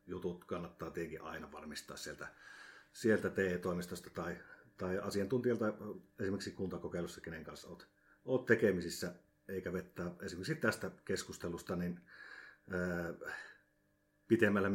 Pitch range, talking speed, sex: 90-105 Hz, 100 wpm, male